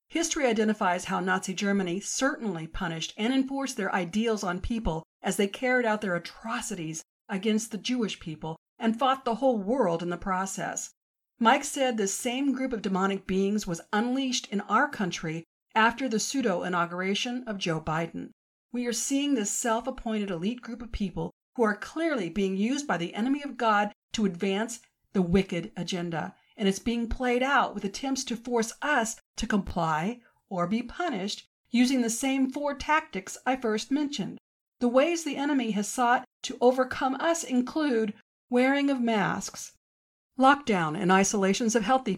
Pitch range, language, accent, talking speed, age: 190-250 Hz, English, American, 165 wpm, 50-69